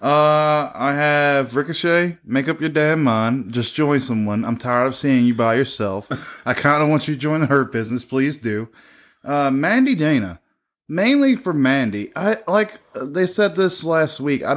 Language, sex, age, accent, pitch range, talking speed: English, male, 20-39, American, 120-165 Hz, 185 wpm